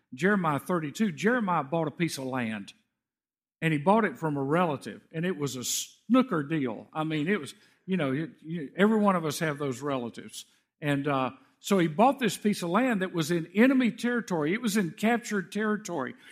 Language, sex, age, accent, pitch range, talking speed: English, male, 50-69, American, 165-225 Hz, 195 wpm